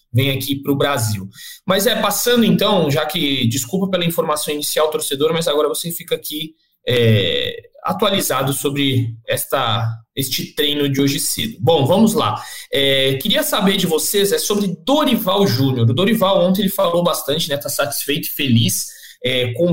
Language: Portuguese